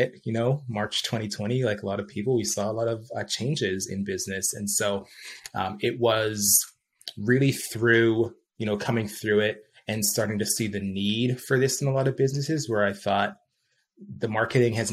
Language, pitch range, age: English, 105-120 Hz, 20-39